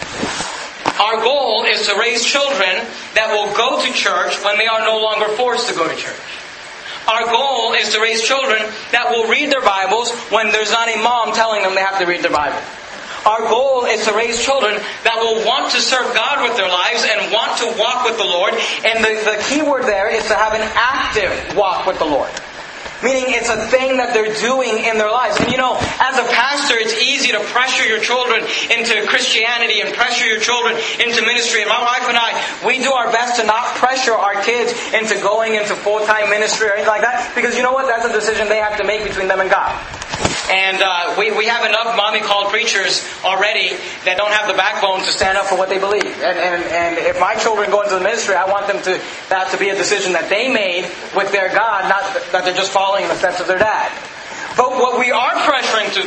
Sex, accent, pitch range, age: male, American, 205-250 Hz, 40-59